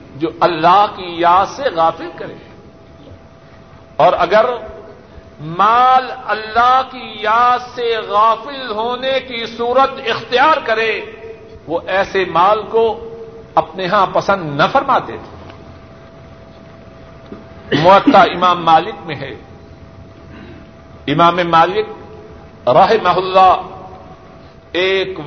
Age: 50-69